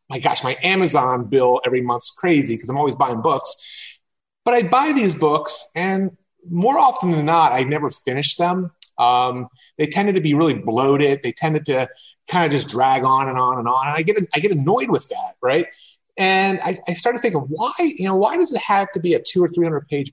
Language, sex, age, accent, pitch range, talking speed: English, male, 30-49, American, 145-205 Hz, 225 wpm